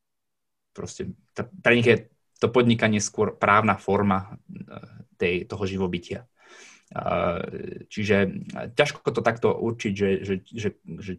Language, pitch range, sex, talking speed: Slovak, 95-110 Hz, male, 120 wpm